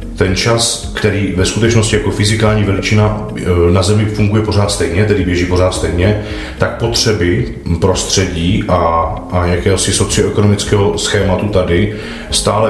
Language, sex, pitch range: Czech, male, 90-100 Hz